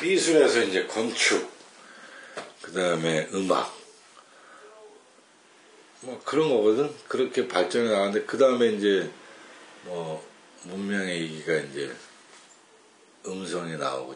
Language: Korean